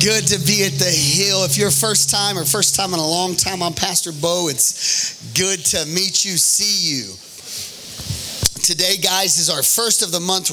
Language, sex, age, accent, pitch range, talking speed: English, male, 30-49, American, 160-205 Hz, 200 wpm